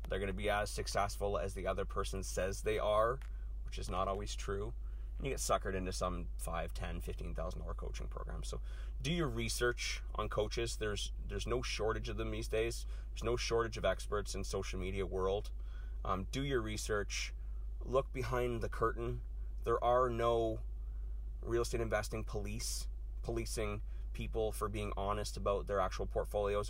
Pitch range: 75-115 Hz